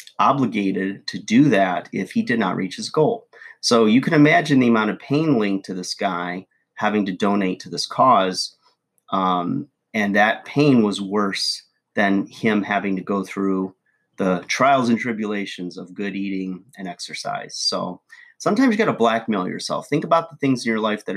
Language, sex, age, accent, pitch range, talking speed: English, male, 30-49, American, 95-120 Hz, 185 wpm